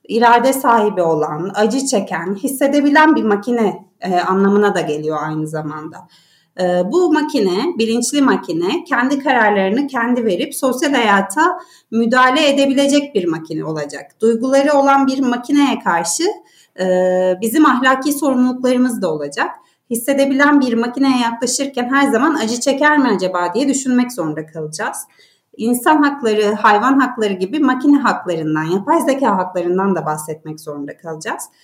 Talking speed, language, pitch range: 125 wpm, Turkish, 185-275 Hz